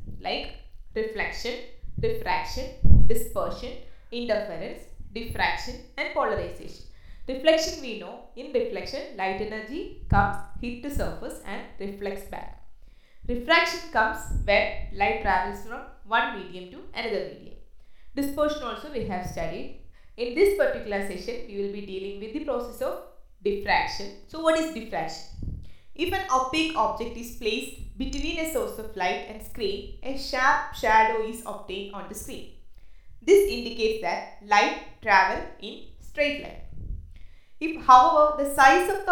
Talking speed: 140 wpm